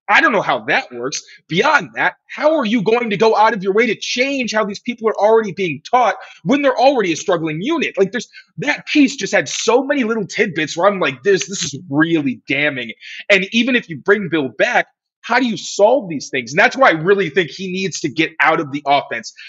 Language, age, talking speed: English, 30-49, 240 wpm